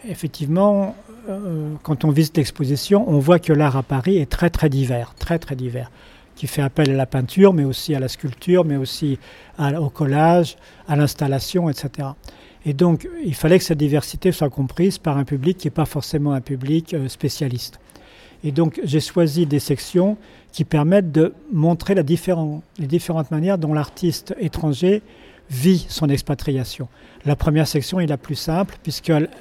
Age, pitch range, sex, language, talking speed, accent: 40-59, 140-170 Hz, male, French, 175 wpm, French